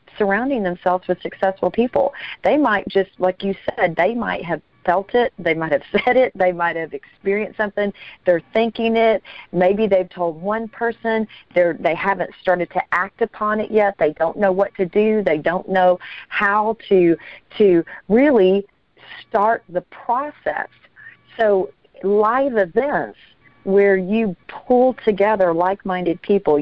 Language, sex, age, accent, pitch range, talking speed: English, female, 40-59, American, 170-205 Hz, 155 wpm